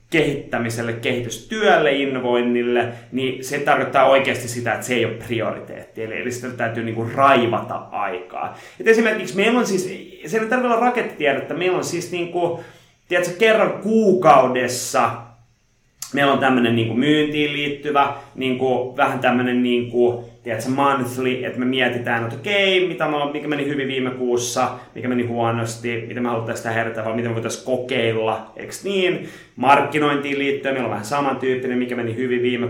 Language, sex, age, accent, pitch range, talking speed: Finnish, male, 30-49, native, 115-145 Hz, 160 wpm